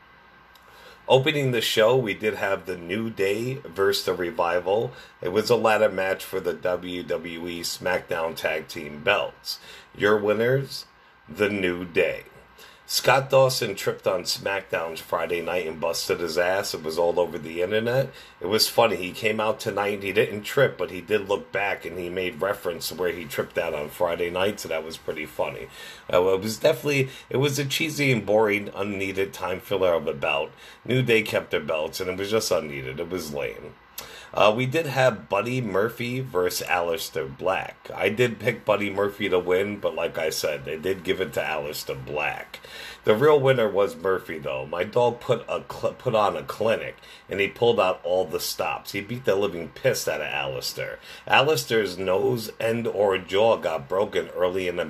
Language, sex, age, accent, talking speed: English, male, 40-59, American, 190 wpm